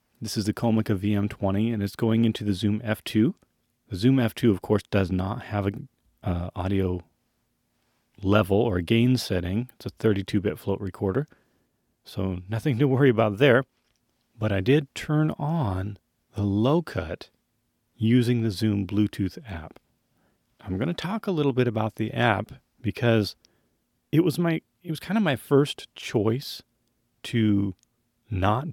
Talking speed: 150 wpm